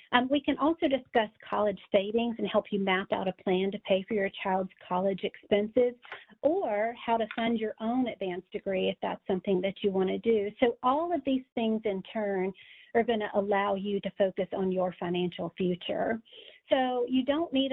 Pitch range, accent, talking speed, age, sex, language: 195-235 Hz, American, 205 wpm, 40-59, female, English